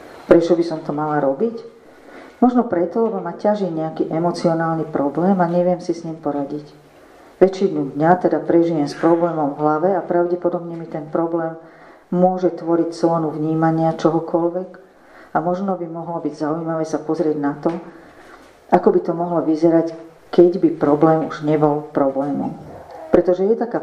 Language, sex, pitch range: Slovak, female, 155-175 Hz